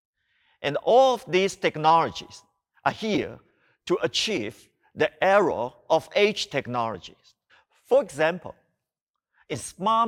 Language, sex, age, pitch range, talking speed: English, male, 50-69, 165-210 Hz, 105 wpm